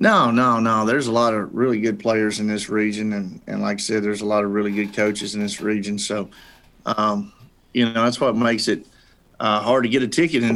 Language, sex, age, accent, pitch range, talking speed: English, male, 40-59, American, 105-120 Hz, 245 wpm